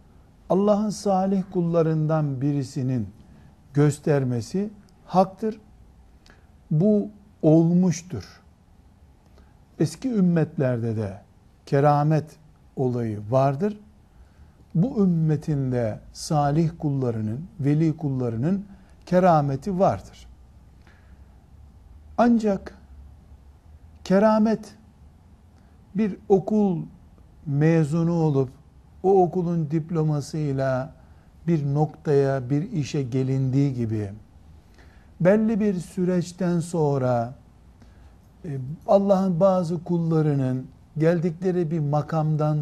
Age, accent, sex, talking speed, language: 60-79, native, male, 65 wpm, Turkish